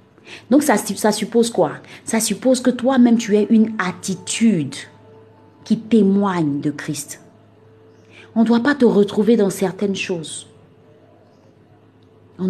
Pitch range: 150-205 Hz